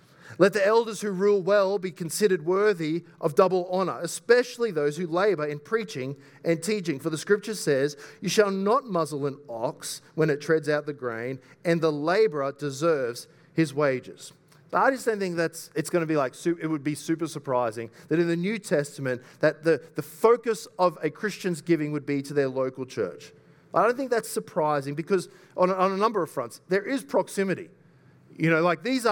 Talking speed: 200 wpm